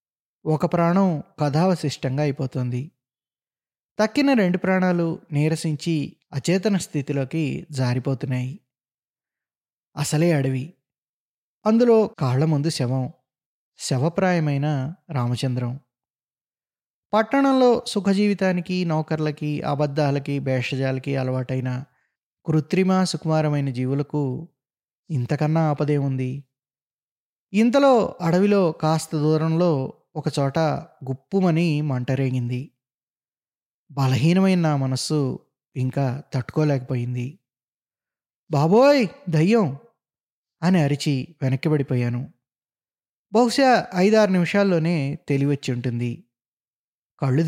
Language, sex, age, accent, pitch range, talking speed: Telugu, male, 20-39, native, 130-175 Hz, 65 wpm